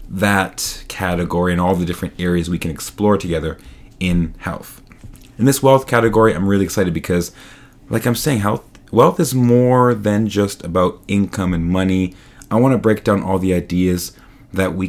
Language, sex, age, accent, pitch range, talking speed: English, male, 30-49, American, 90-115 Hz, 175 wpm